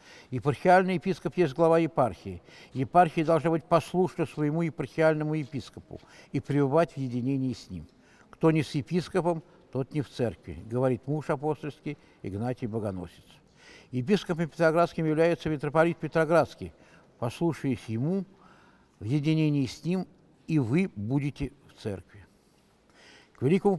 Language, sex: Russian, male